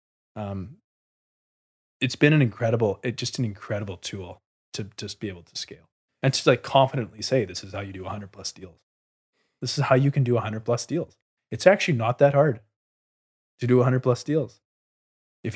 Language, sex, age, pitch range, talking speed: English, male, 20-39, 105-125 Hz, 195 wpm